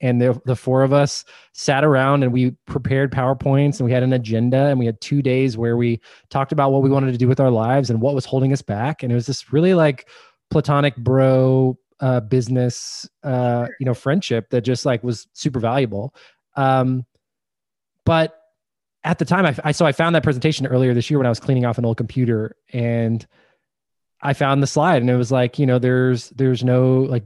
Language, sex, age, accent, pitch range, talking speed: English, male, 20-39, American, 120-145 Hz, 215 wpm